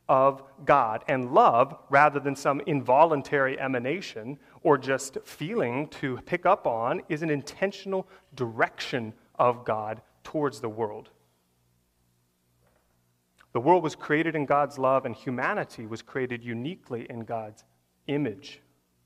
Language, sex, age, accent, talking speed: English, male, 30-49, American, 125 wpm